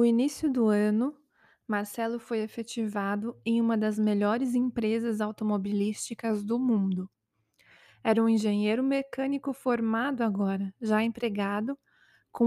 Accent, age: Brazilian, 20-39